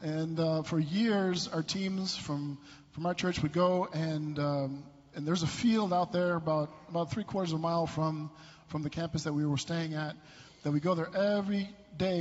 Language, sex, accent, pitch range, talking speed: English, male, American, 150-175 Hz, 205 wpm